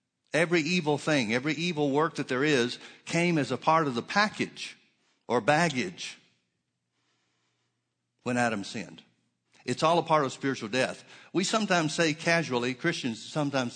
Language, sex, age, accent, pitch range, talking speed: English, male, 60-79, American, 110-155 Hz, 150 wpm